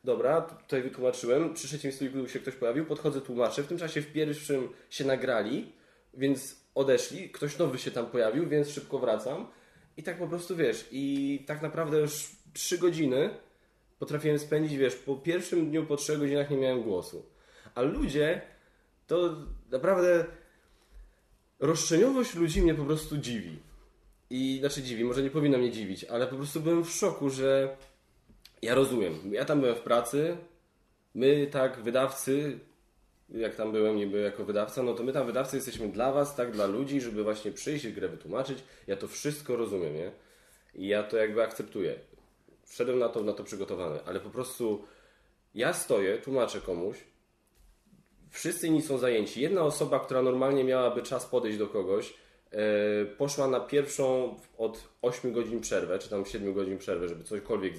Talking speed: 170 wpm